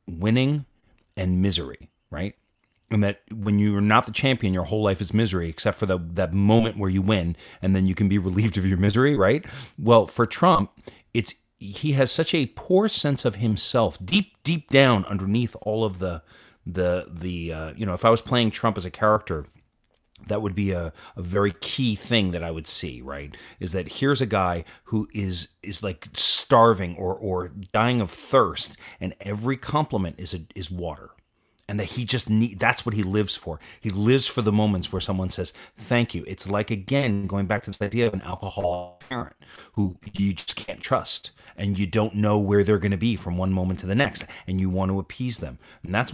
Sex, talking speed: male, 210 wpm